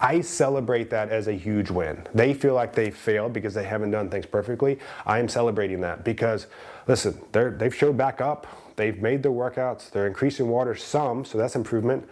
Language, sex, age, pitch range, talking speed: English, male, 30-49, 105-135 Hz, 195 wpm